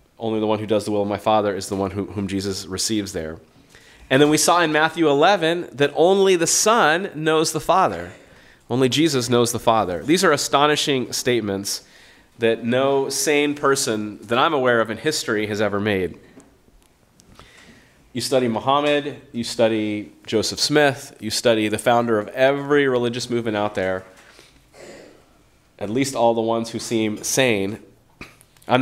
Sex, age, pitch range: male, 30-49, 105-135 Hz